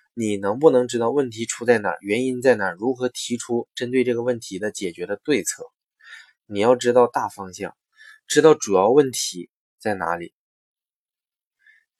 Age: 20-39